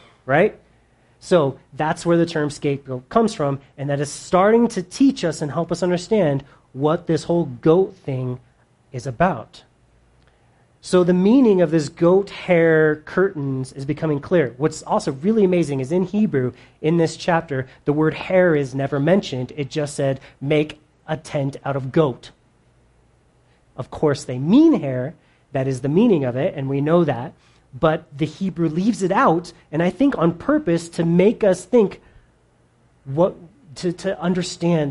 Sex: male